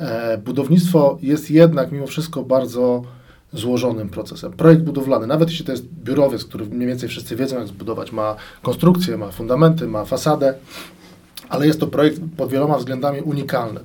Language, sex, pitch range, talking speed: Polish, male, 120-150 Hz, 155 wpm